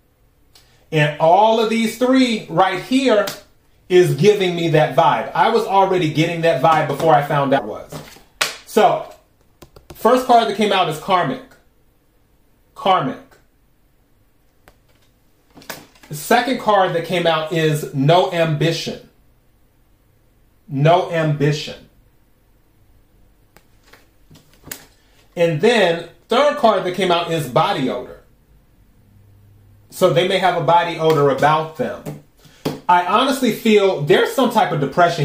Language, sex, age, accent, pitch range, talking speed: English, male, 30-49, American, 140-195 Hz, 120 wpm